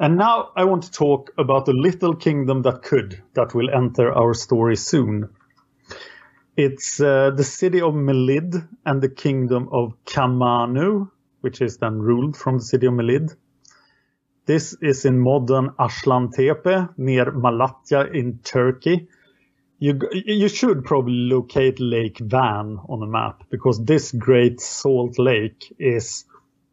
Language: English